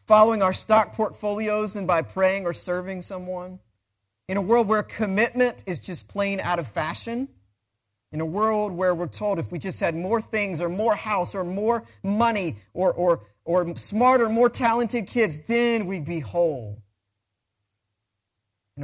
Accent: American